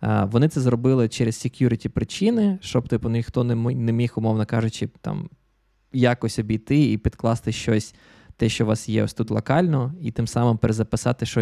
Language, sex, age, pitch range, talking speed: Ukrainian, male, 20-39, 115-135 Hz, 170 wpm